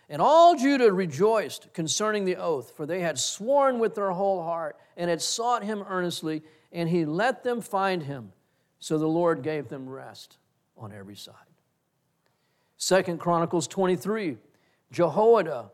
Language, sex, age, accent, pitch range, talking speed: English, male, 50-69, American, 170-215 Hz, 150 wpm